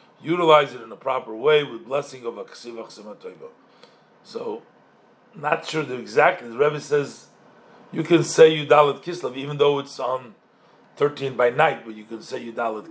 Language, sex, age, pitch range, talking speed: English, male, 50-69, 145-200 Hz, 165 wpm